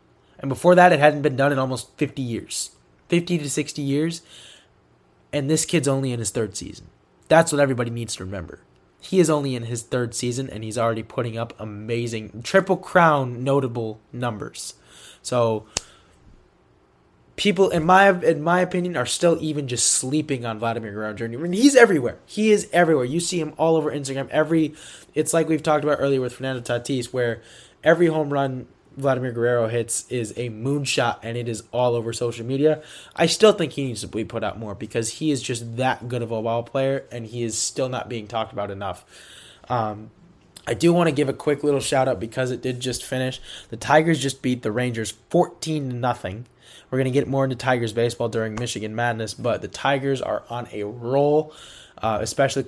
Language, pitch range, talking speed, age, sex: English, 115-150 Hz, 200 wpm, 20-39, male